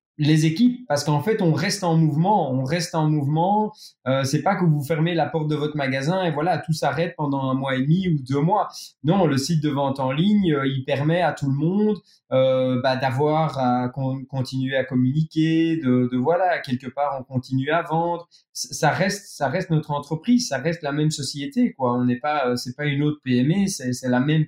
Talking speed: 225 wpm